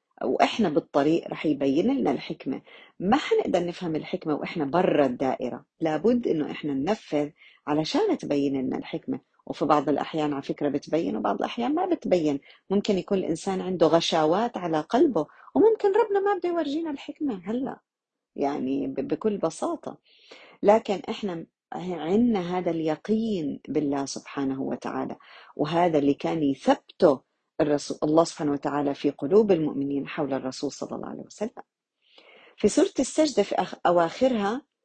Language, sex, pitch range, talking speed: Arabic, female, 145-215 Hz, 135 wpm